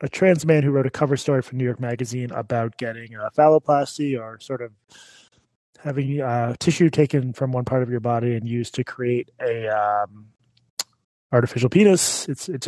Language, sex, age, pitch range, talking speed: English, male, 20-39, 115-145 Hz, 190 wpm